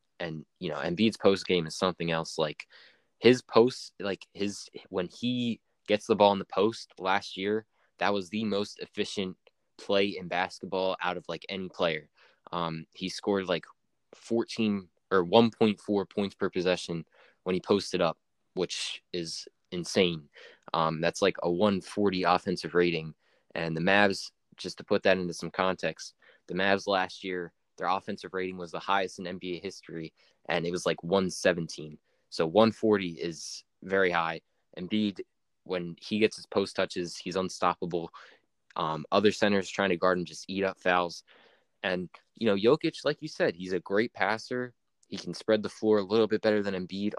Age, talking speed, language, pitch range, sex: 20-39, 175 wpm, English, 90-105 Hz, male